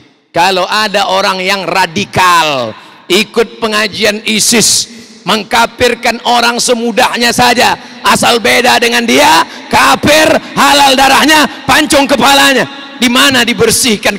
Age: 40-59